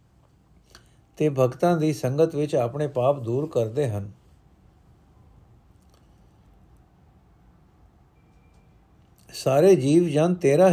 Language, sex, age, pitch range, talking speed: Punjabi, male, 60-79, 125-160 Hz, 80 wpm